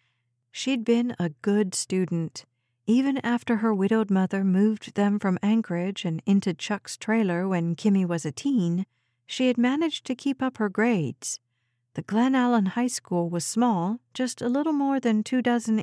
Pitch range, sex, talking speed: 170-230 Hz, female, 165 wpm